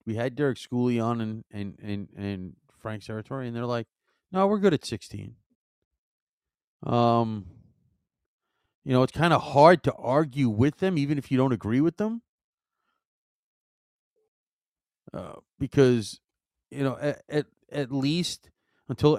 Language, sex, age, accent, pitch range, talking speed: English, male, 40-59, American, 110-145 Hz, 145 wpm